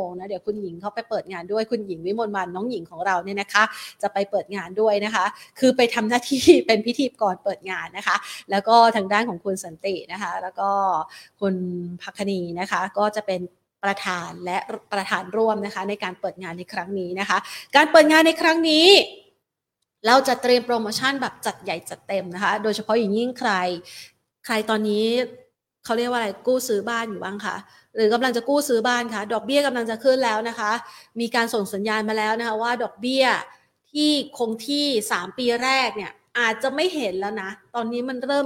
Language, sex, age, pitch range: Thai, female, 30-49, 200-240 Hz